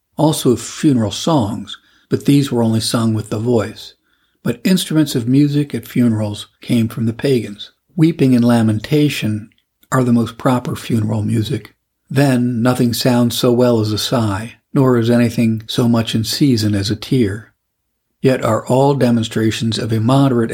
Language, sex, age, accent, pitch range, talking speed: English, male, 50-69, American, 110-130 Hz, 160 wpm